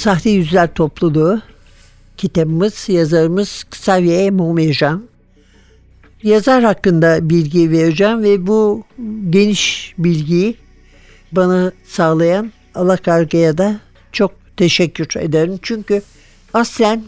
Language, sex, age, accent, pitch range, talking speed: Turkish, male, 60-79, native, 165-200 Hz, 85 wpm